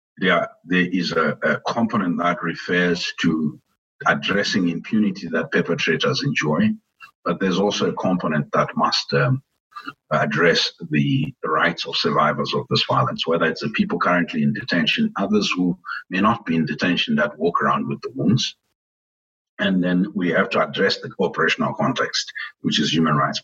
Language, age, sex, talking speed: English, 50-69, male, 160 wpm